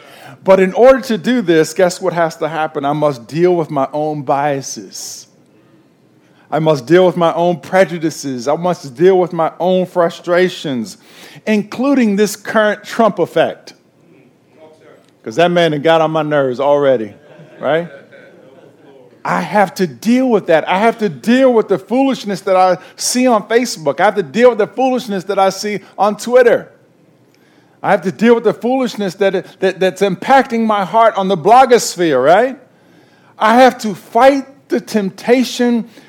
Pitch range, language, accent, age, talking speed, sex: 160-220 Hz, English, American, 50-69, 165 wpm, male